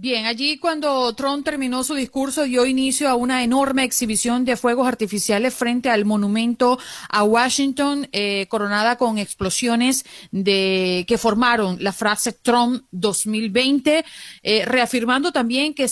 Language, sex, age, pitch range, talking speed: Spanish, female, 30-49, 205-245 Hz, 130 wpm